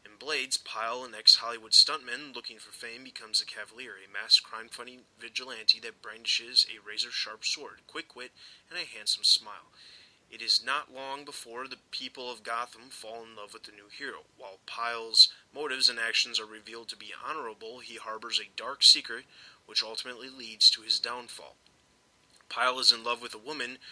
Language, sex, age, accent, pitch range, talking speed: English, male, 20-39, American, 110-125 Hz, 180 wpm